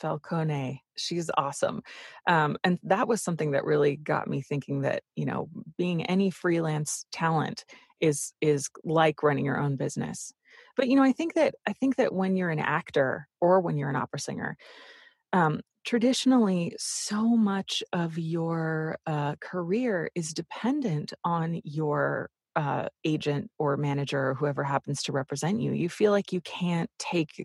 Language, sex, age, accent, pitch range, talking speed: English, female, 30-49, American, 150-190 Hz, 160 wpm